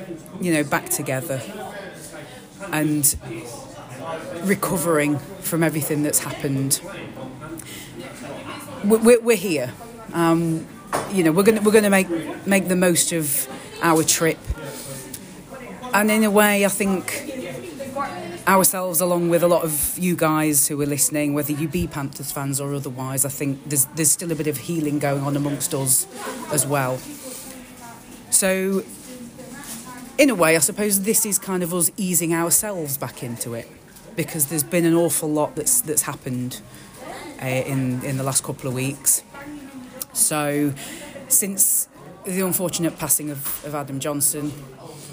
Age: 30-49